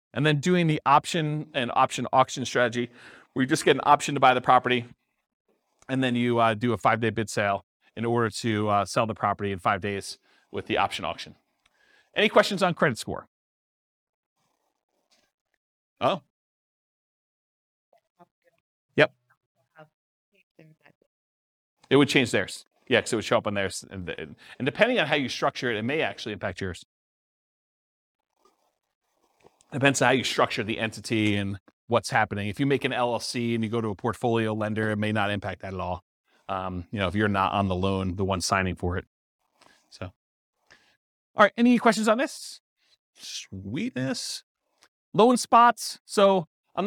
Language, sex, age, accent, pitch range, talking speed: English, male, 40-59, American, 110-160 Hz, 165 wpm